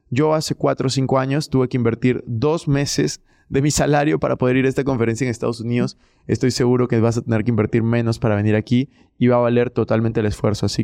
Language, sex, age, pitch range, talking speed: Spanish, male, 20-39, 120-145 Hz, 240 wpm